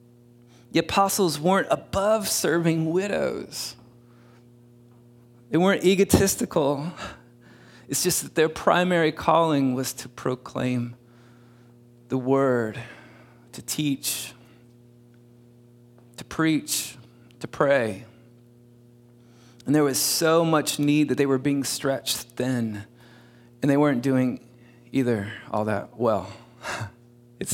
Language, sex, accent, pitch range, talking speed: English, male, American, 120-145 Hz, 100 wpm